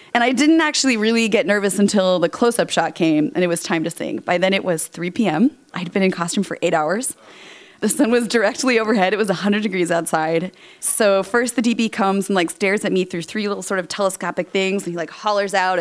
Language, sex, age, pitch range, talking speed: English, female, 20-39, 190-235 Hz, 240 wpm